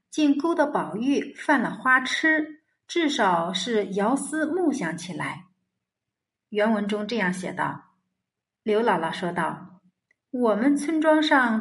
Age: 50-69